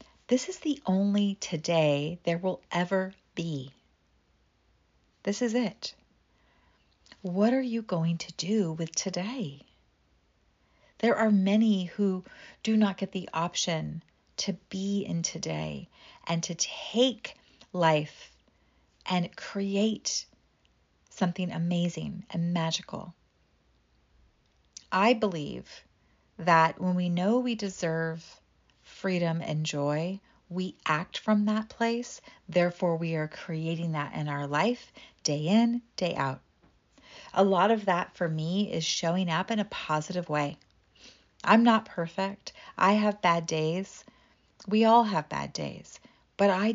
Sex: female